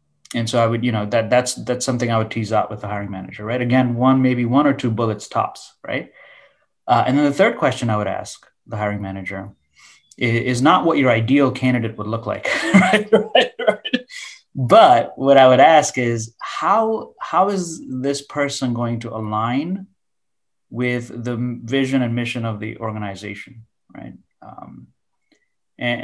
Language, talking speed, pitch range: English, 175 wpm, 110-135 Hz